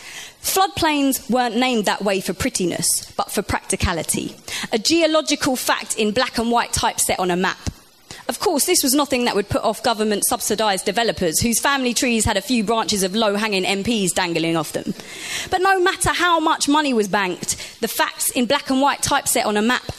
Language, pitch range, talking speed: English, 190-255 Hz, 195 wpm